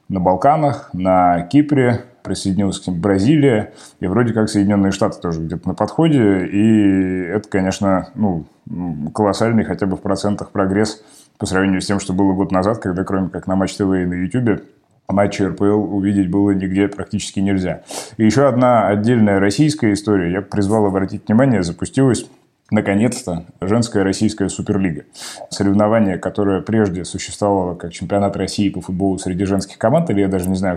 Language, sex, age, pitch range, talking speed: Russian, male, 20-39, 95-105 Hz, 165 wpm